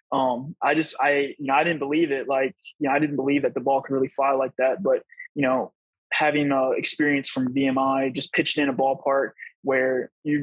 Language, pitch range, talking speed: English, 135-145 Hz, 220 wpm